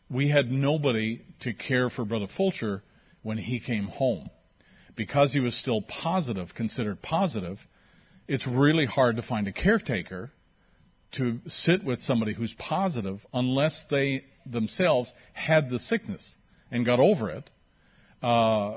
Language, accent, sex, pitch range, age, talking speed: English, American, male, 115-145 Hz, 50-69, 135 wpm